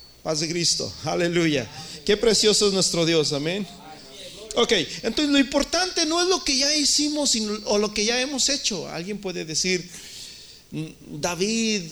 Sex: male